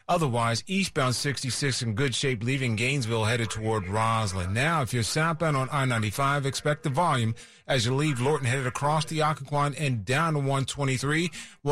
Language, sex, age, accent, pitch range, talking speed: English, male, 40-59, American, 115-150 Hz, 165 wpm